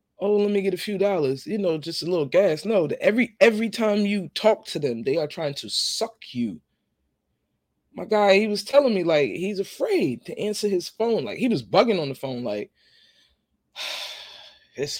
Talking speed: 200 wpm